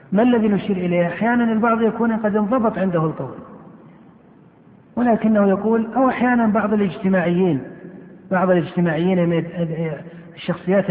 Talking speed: 110 wpm